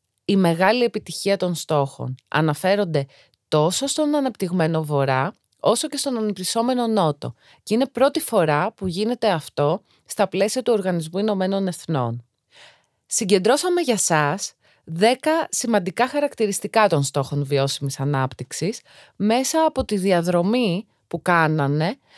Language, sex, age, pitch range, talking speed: Greek, female, 30-49, 145-230 Hz, 115 wpm